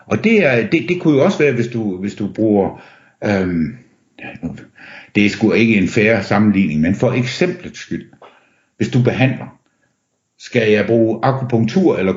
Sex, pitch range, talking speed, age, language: male, 105-145 Hz, 180 wpm, 60-79, Danish